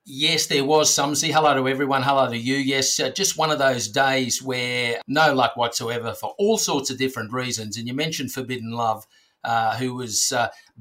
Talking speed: 205 wpm